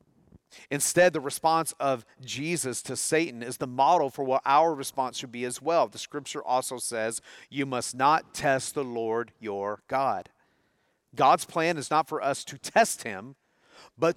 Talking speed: 170 wpm